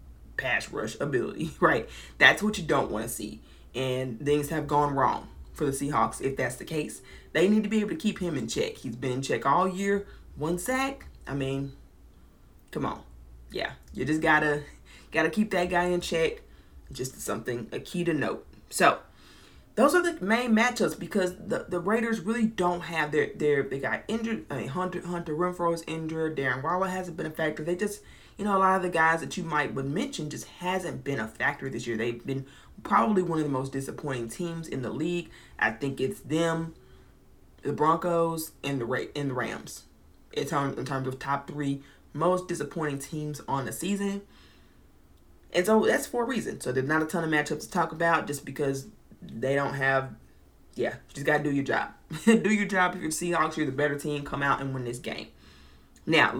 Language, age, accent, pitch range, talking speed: English, 20-39, American, 135-185 Hz, 205 wpm